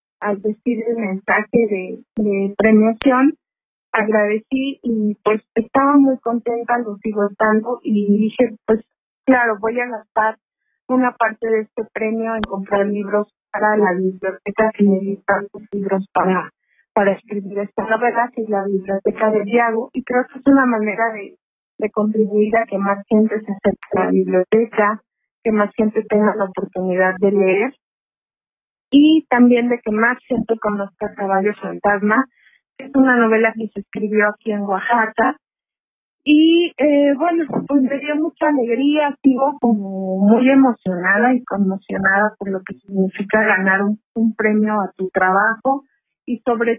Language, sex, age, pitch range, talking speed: Spanish, female, 30-49, 200-240 Hz, 150 wpm